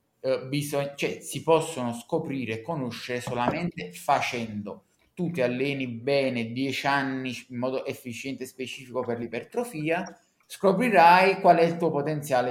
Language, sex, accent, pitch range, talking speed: Italian, male, native, 125-165 Hz, 135 wpm